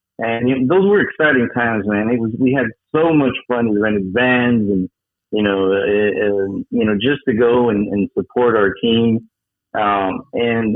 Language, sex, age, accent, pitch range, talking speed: English, male, 40-59, American, 105-130 Hz, 195 wpm